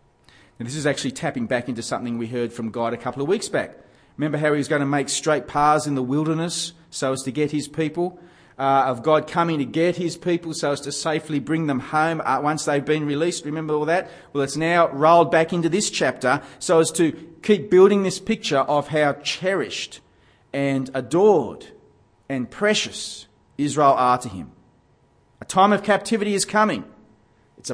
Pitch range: 130-170 Hz